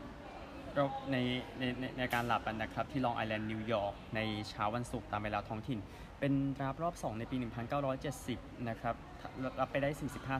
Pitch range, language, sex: 110-135 Hz, Thai, male